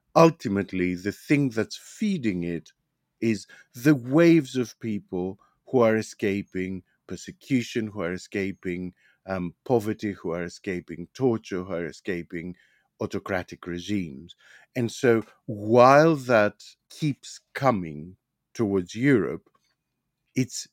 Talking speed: 110 wpm